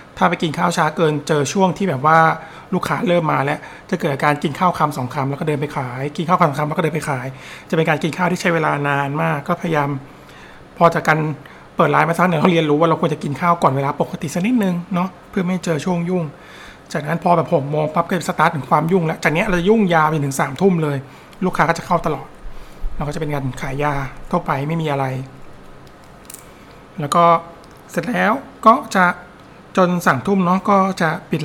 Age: 60-79